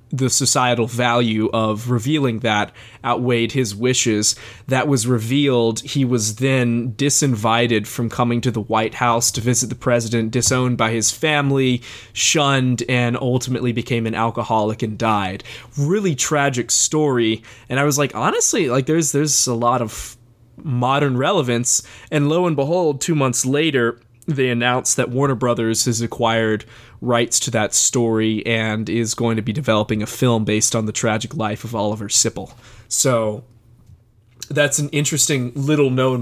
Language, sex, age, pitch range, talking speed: English, male, 20-39, 115-130 Hz, 155 wpm